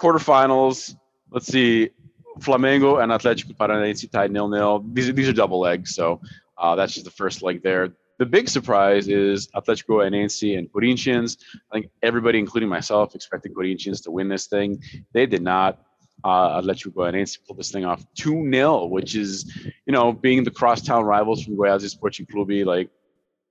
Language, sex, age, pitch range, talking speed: English, male, 20-39, 95-120 Hz, 165 wpm